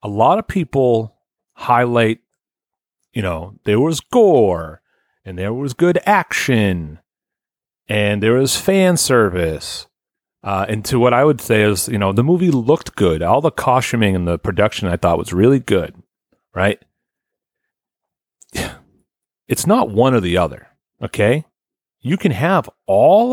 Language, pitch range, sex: English, 105-160 Hz, male